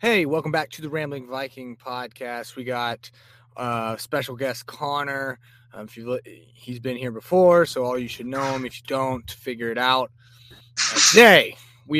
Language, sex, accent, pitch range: English, male, American, 120-145 Hz